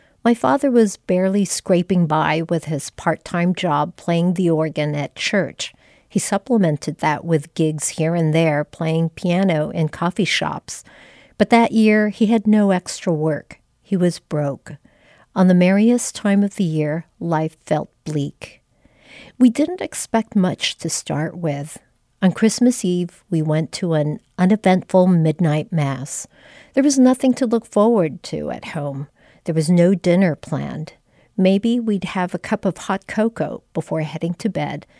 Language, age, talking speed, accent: English, 50-69, 160 wpm, American